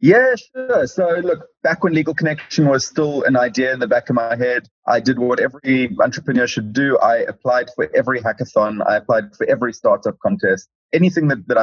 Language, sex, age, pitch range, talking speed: English, male, 30-49, 100-130 Hz, 200 wpm